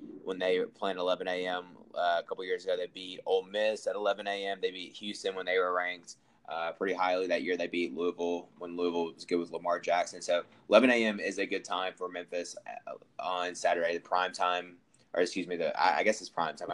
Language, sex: English, male